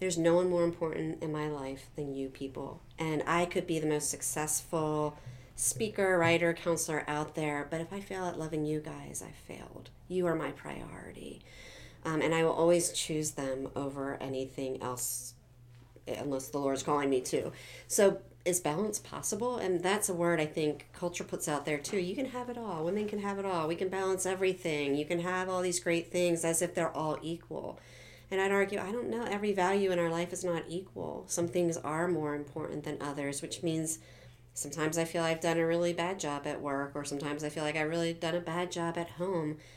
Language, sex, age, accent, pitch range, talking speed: English, female, 40-59, American, 140-175 Hz, 215 wpm